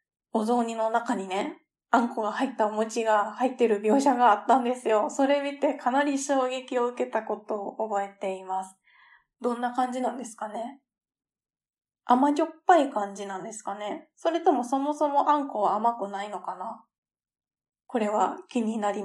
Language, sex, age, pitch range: Japanese, female, 20-39, 215-295 Hz